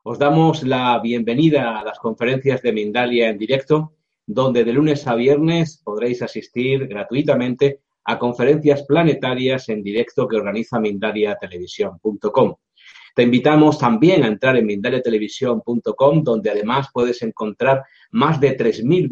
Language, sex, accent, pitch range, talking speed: Spanish, male, Spanish, 115-145 Hz, 130 wpm